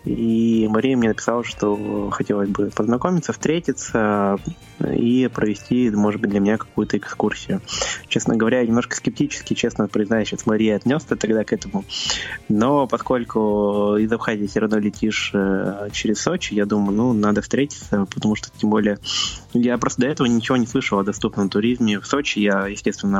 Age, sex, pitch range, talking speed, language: 20-39, male, 105-120 Hz, 155 wpm, Russian